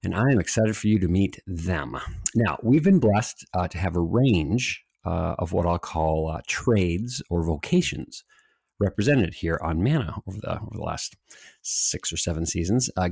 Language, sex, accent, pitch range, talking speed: English, male, American, 90-125 Hz, 190 wpm